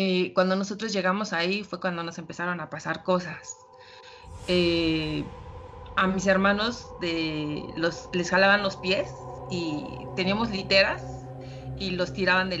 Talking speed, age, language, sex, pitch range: 135 wpm, 30-49, Spanish, female, 150-195 Hz